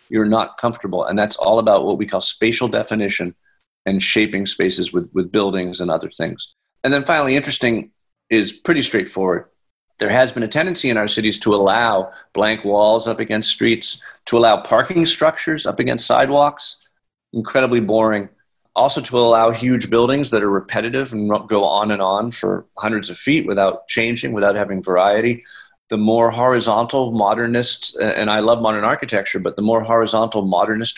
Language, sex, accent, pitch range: English, male, American, 105-120 Hz